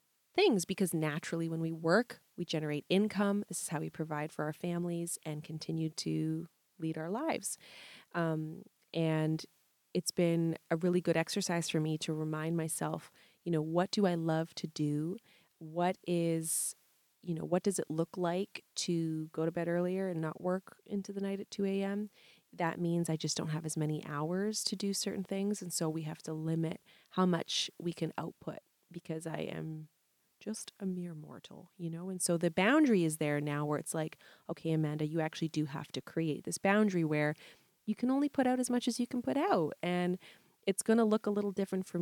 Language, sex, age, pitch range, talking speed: English, female, 30-49, 160-190 Hz, 205 wpm